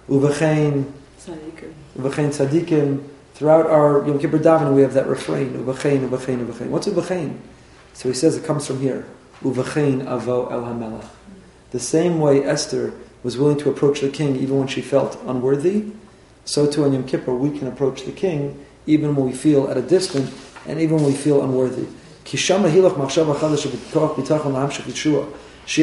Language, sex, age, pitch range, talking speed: English, male, 40-59, 140-195 Hz, 140 wpm